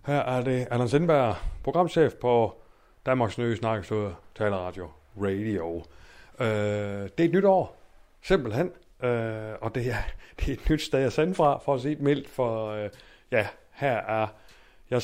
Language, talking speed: Danish, 160 wpm